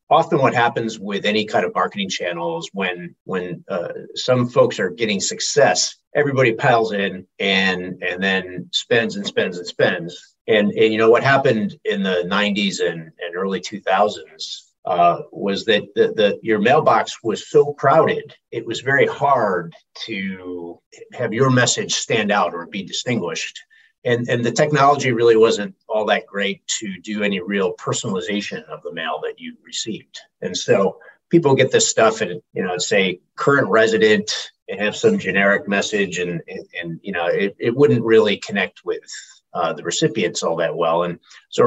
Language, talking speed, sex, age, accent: English, 175 wpm, male, 50-69, American